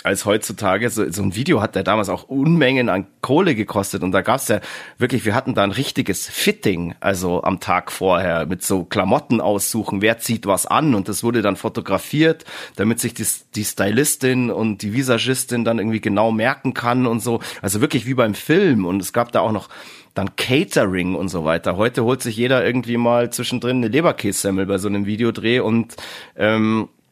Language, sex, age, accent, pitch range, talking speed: German, male, 30-49, German, 105-140 Hz, 195 wpm